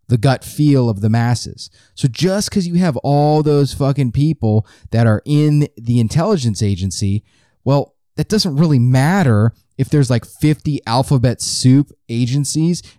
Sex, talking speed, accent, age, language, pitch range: male, 155 wpm, American, 30-49, English, 105-140 Hz